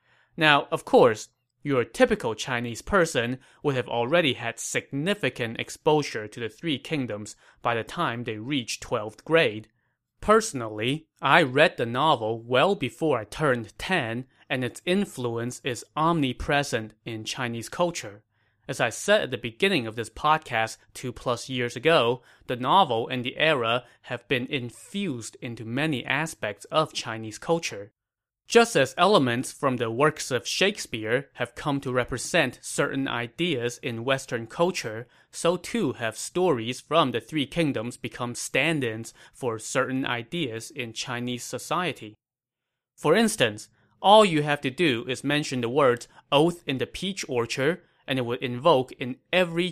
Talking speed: 150 wpm